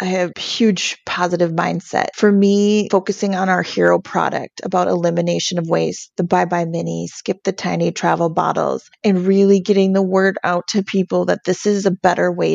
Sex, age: female, 30-49